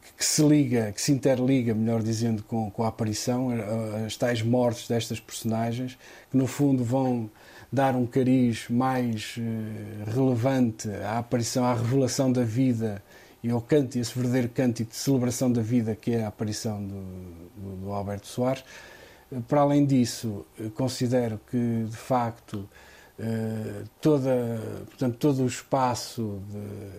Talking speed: 145 wpm